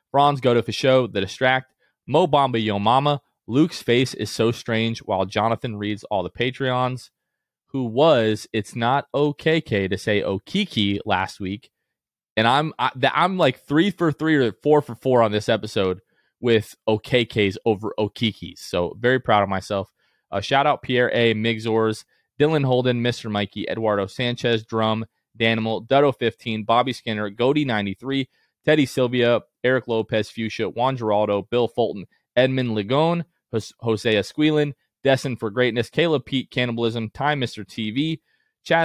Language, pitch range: English, 105-135 Hz